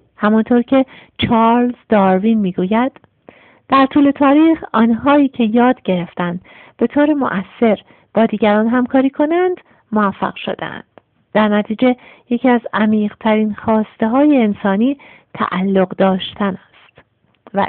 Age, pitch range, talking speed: 50-69, 200-255 Hz, 110 wpm